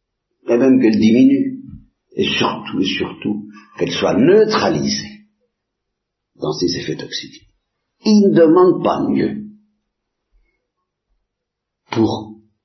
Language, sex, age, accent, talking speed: Italian, male, 60-79, French, 100 wpm